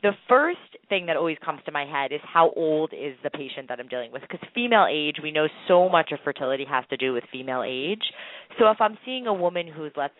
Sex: female